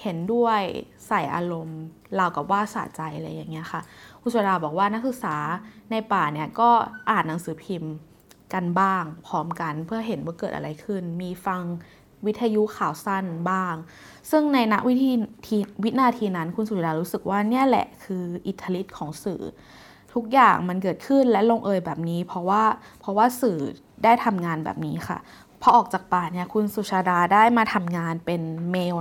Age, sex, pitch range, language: 20-39, female, 175-225 Hz, Thai